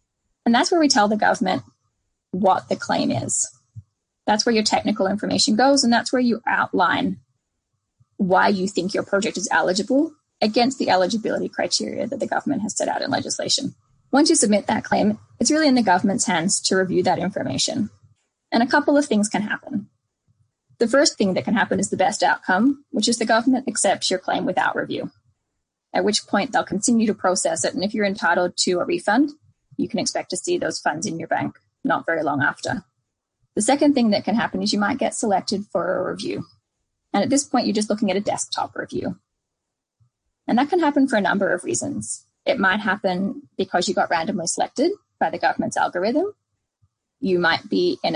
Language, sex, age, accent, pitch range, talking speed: English, female, 10-29, American, 185-260 Hz, 200 wpm